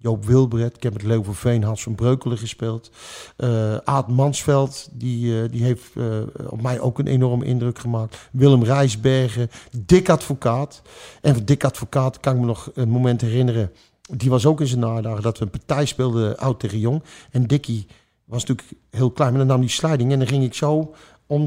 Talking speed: 200 wpm